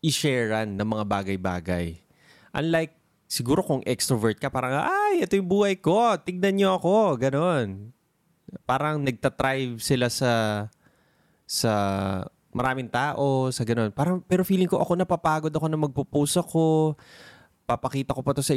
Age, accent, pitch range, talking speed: 20-39, native, 115-160 Hz, 135 wpm